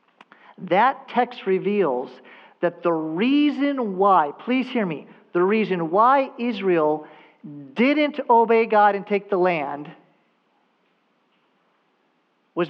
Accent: American